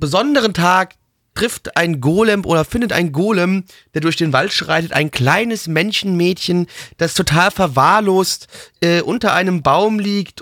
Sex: male